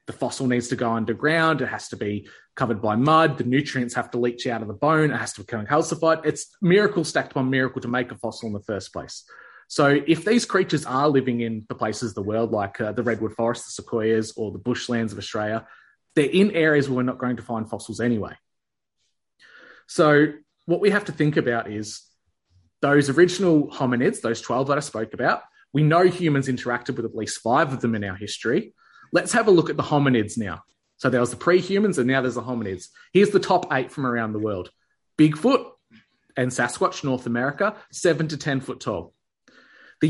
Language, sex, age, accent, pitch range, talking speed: English, male, 20-39, Australian, 115-150 Hz, 210 wpm